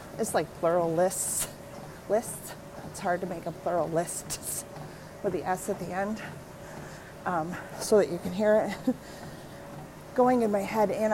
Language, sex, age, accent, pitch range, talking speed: English, female, 30-49, American, 185-240 Hz, 160 wpm